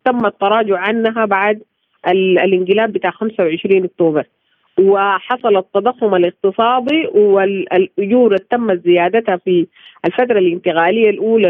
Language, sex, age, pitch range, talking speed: Arabic, female, 40-59, 180-230 Hz, 100 wpm